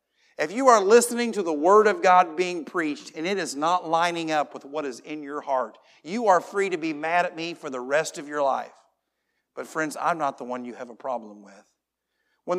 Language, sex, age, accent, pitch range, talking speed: English, male, 40-59, American, 170-215 Hz, 235 wpm